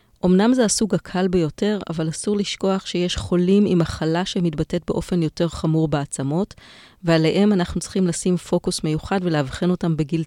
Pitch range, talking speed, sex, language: 165-195 Hz, 150 wpm, female, Hebrew